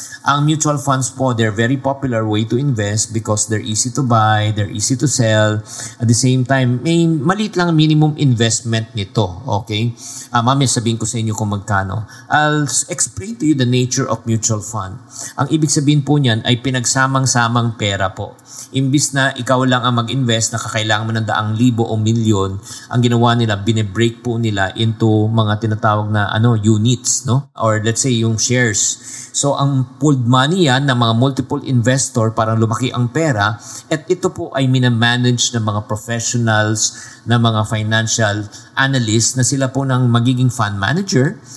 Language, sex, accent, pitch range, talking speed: English, male, Filipino, 110-135 Hz, 175 wpm